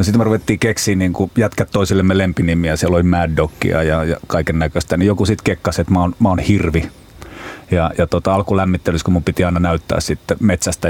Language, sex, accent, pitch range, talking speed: Finnish, male, native, 90-105 Hz, 205 wpm